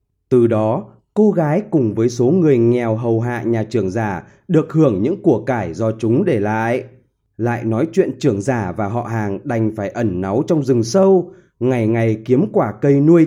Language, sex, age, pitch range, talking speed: Vietnamese, male, 20-39, 115-175 Hz, 200 wpm